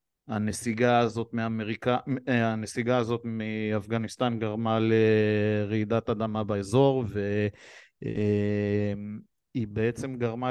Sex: male